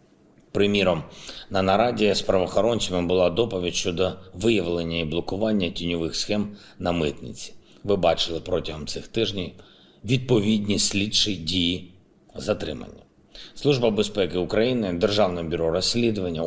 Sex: male